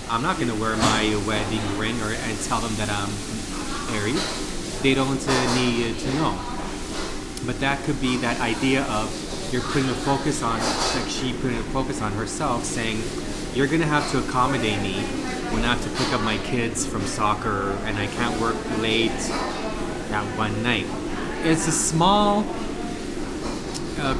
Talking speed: 175 wpm